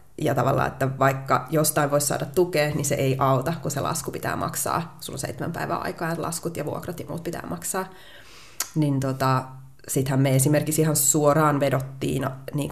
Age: 20-39